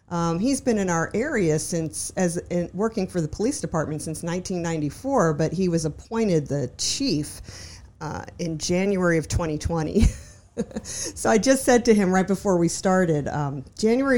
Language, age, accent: English, 50-69, American